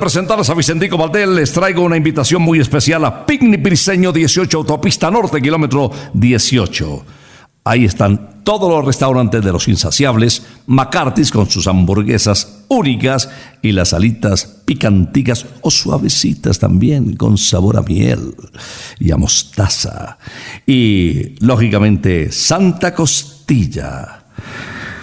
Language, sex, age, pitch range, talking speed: Spanish, male, 60-79, 105-150 Hz, 120 wpm